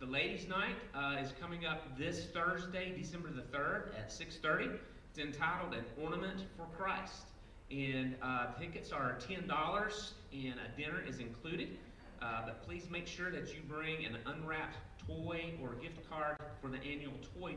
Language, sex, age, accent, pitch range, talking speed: English, male, 40-59, American, 120-160 Hz, 165 wpm